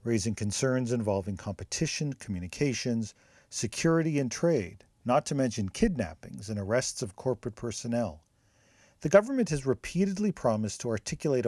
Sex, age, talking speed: male, 50-69, 125 wpm